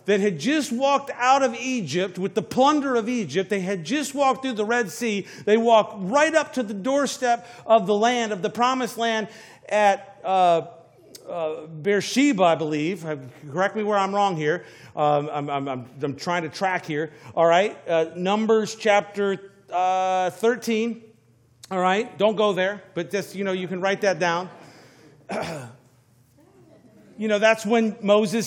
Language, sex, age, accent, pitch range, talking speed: English, male, 50-69, American, 170-235 Hz, 170 wpm